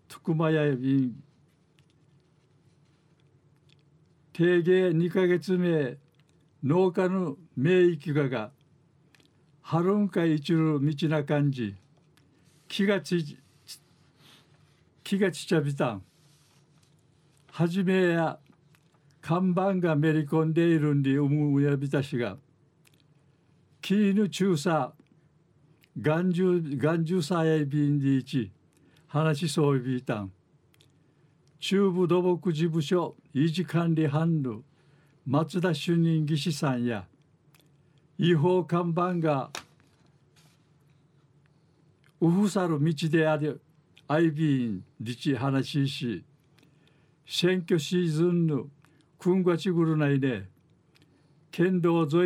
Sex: male